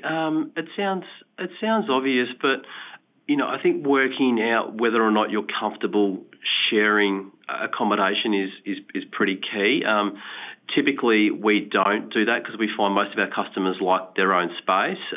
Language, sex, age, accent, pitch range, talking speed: English, male, 30-49, Australian, 95-115 Hz, 165 wpm